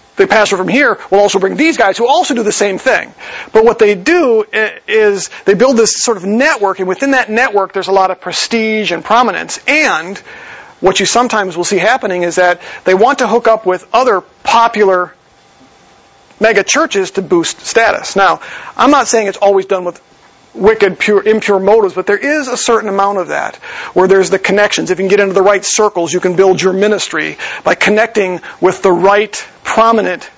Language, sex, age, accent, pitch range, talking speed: English, male, 40-59, American, 185-230 Hz, 200 wpm